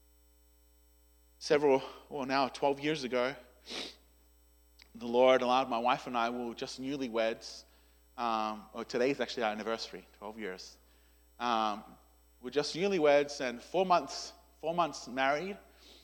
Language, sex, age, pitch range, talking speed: English, male, 30-49, 110-150 Hz, 125 wpm